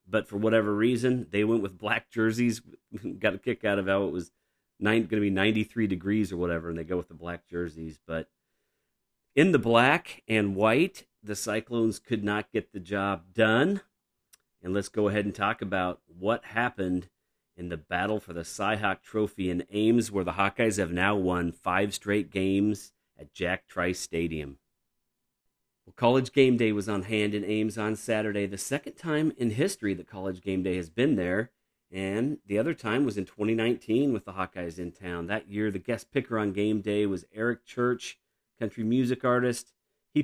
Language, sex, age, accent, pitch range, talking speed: English, male, 40-59, American, 95-115 Hz, 190 wpm